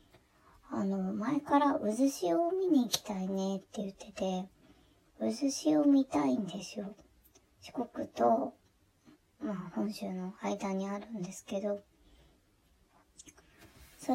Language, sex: Japanese, male